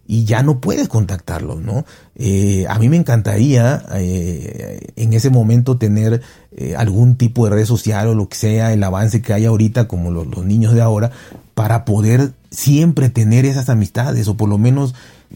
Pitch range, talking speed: 105-125 Hz, 185 wpm